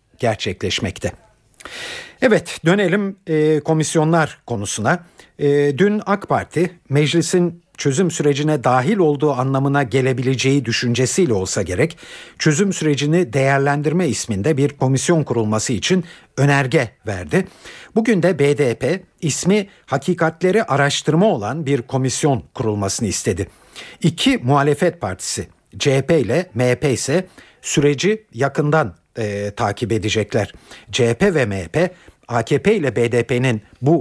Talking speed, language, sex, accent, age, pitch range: 100 wpm, Turkish, male, native, 50-69, 125-170 Hz